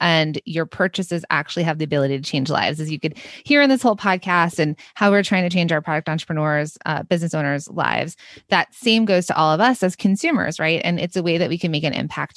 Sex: female